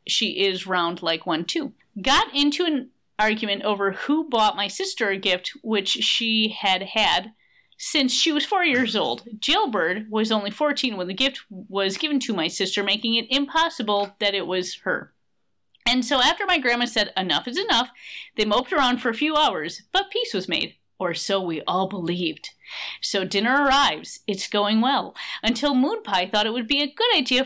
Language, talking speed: English, 190 wpm